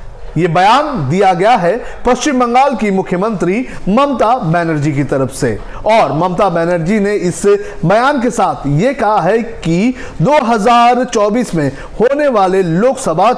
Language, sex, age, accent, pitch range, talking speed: Hindi, male, 40-59, native, 170-240 Hz, 140 wpm